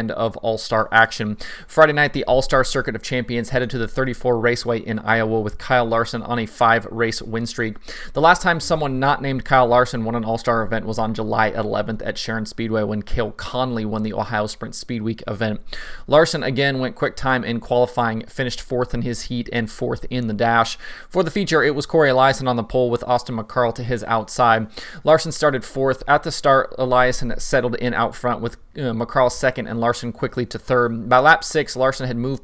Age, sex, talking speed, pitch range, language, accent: 30-49, male, 205 wpm, 115-130 Hz, English, American